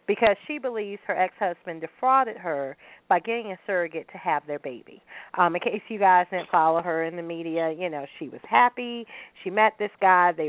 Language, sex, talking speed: English, female, 205 wpm